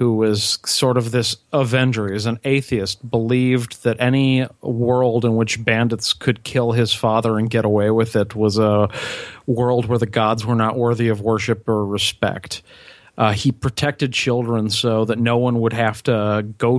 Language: English